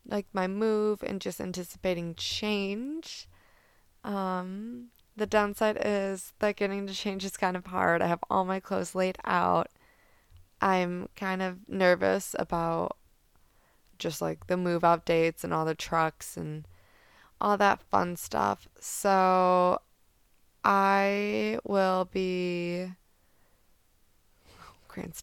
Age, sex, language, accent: 20-39, female, English, American